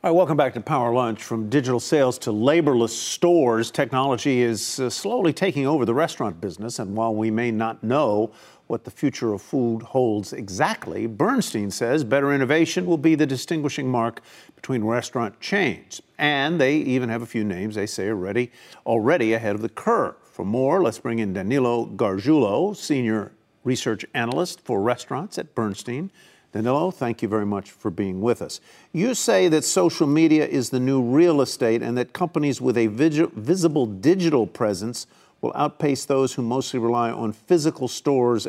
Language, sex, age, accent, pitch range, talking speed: English, male, 50-69, American, 115-150 Hz, 170 wpm